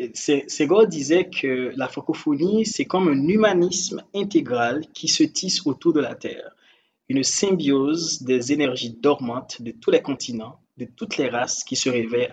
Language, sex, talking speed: French, male, 160 wpm